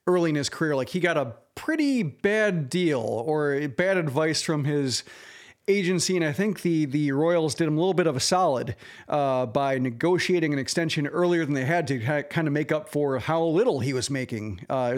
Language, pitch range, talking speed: English, 145-205 Hz, 210 wpm